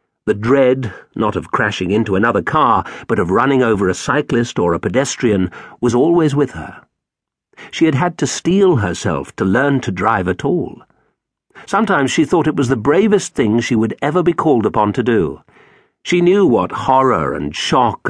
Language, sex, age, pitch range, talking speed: English, male, 50-69, 100-140 Hz, 180 wpm